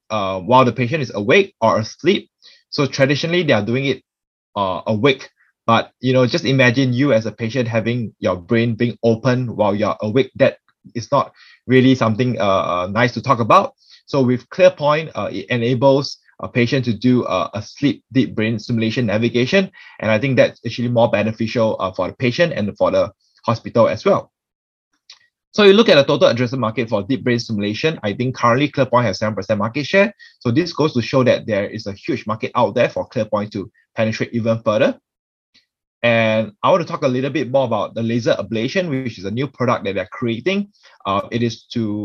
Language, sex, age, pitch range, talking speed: English, male, 20-39, 115-150 Hz, 200 wpm